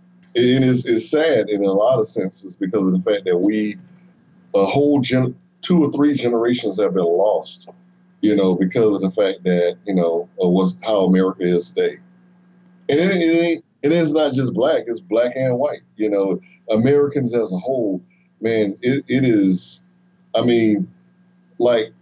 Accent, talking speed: American, 175 wpm